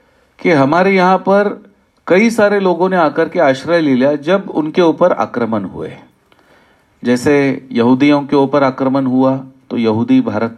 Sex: male